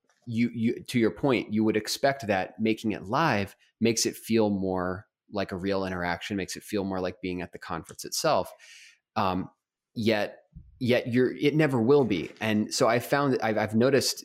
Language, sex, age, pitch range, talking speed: English, male, 20-39, 95-120 Hz, 195 wpm